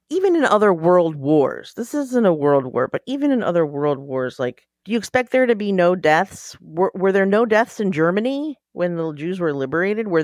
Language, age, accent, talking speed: English, 40-59, American, 225 wpm